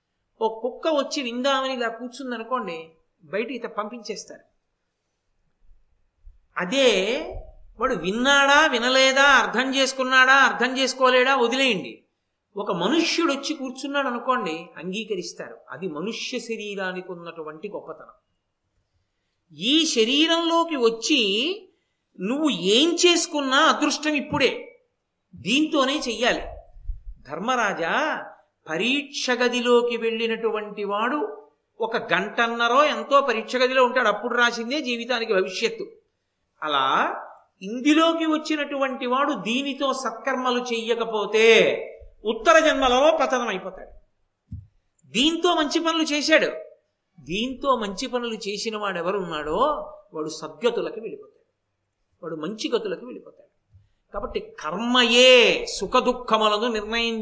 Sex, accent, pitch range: male, native, 210-295 Hz